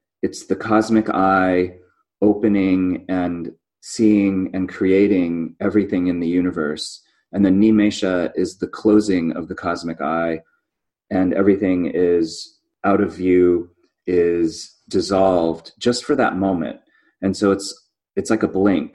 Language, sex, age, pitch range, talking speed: English, male, 30-49, 90-105 Hz, 135 wpm